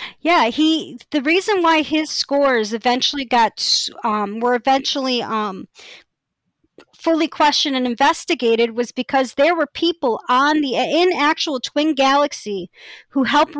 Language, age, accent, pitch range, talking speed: English, 40-59, American, 230-290 Hz, 130 wpm